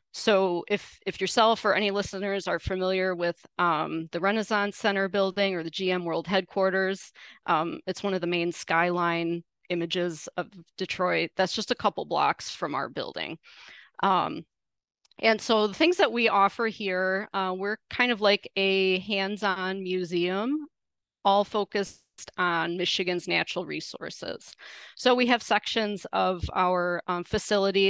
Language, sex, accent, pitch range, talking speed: English, female, American, 175-200 Hz, 150 wpm